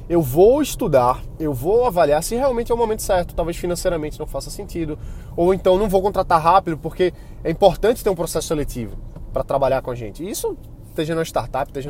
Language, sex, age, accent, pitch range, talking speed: Portuguese, male, 20-39, Brazilian, 125-180 Hz, 200 wpm